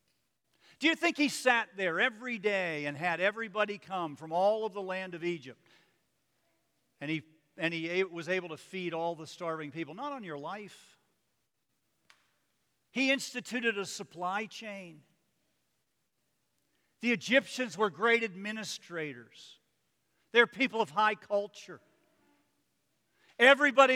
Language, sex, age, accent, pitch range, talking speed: English, male, 50-69, American, 170-225 Hz, 130 wpm